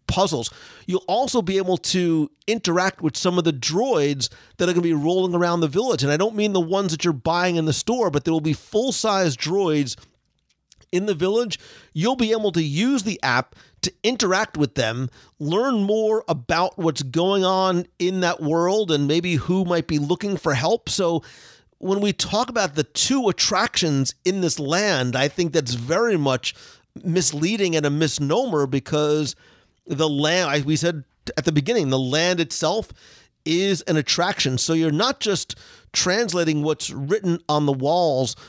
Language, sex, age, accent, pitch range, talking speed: English, male, 40-59, American, 150-195 Hz, 180 wpm